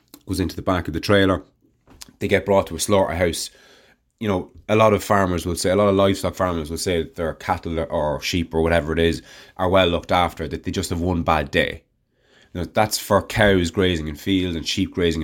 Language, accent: English, Irish